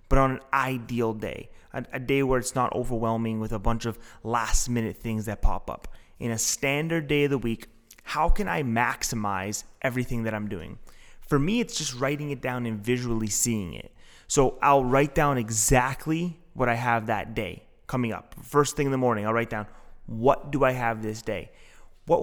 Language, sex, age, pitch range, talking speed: English, male, 30-49, 110-135 Hz, 200 wpm